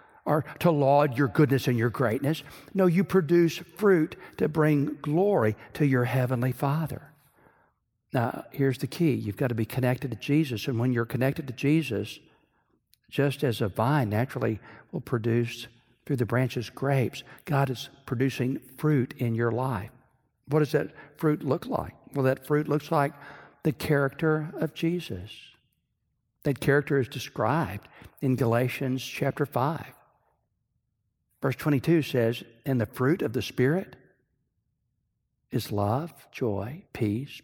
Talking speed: 145 wpm